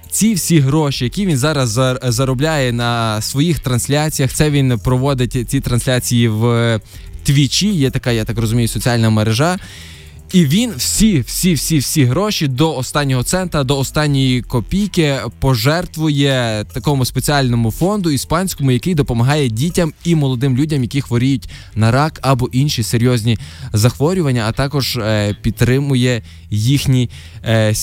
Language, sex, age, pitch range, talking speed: Ukrainian, male, 20-39, 110-140 Hz, 125 wpm